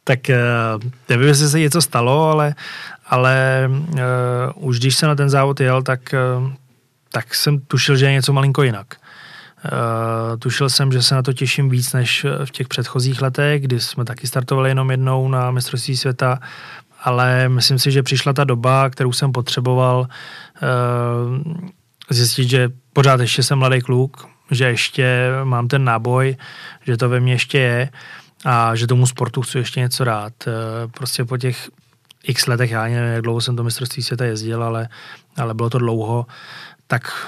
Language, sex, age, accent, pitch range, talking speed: Czech, male, 20-39, native, 120-135 Hz, 165 wpm